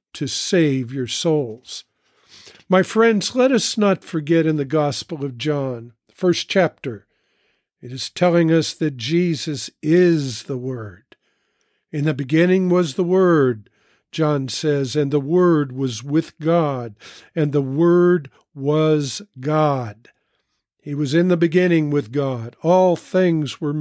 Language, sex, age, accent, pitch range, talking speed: English, male, 50-69, American, 145-180 Hz, 140 wpm